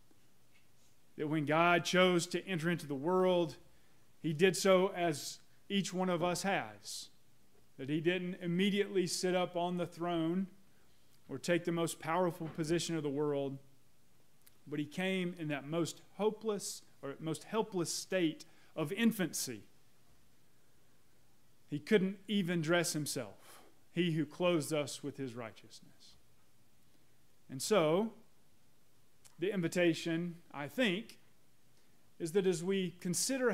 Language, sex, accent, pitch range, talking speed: English, male, American, 165-205 Hz, 130 wpm